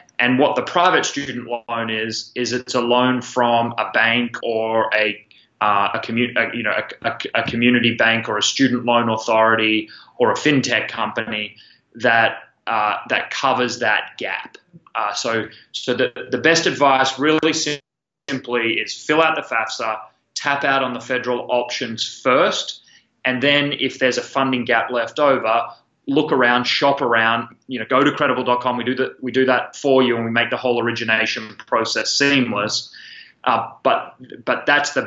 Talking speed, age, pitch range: 170 wpm, 20-39, 115-130 Hz